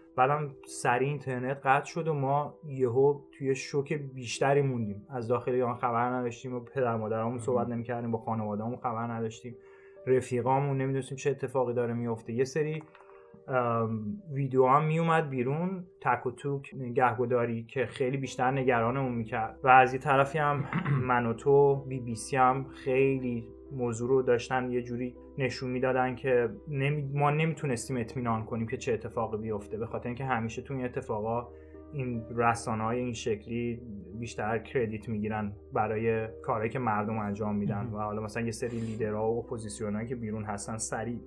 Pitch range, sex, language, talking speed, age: 115-140 Hz, male, Persian, 160 wpm, 30-49